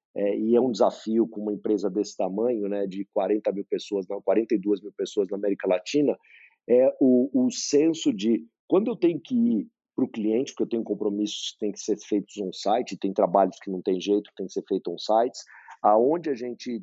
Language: Portuguese